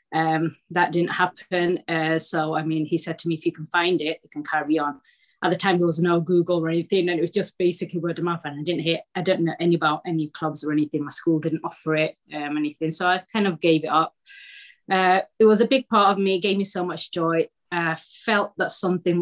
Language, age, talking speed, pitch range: English, 20-39, 260 wpm, 155-175 Hz